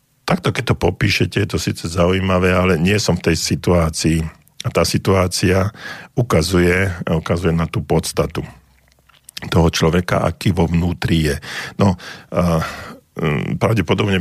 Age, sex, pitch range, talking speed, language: 50-69, male, 80-100 Hz, 125 wpm, Slovak